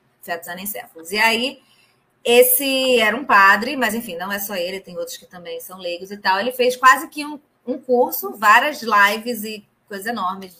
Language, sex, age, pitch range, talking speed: Portuguese, female, 20-39, 205-255 Hz, 180 wpm